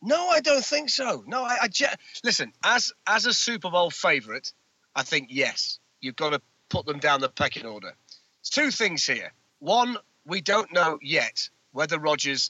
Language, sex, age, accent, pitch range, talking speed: English, male, 30-49, British, 140-185 Hz, 185 wpm